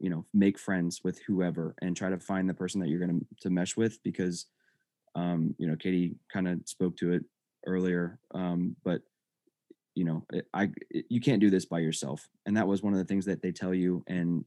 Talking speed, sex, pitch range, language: 230 wpm, male, 90-100 Hz, English